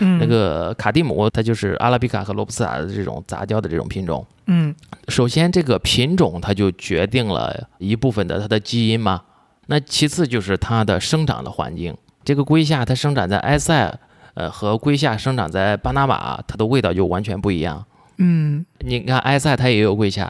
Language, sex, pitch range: Chinese, male, 100-130 Hz